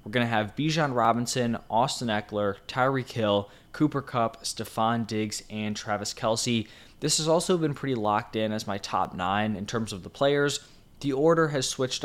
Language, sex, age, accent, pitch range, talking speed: English, male, 20-39, American, 105-125 Hz, 185 wpm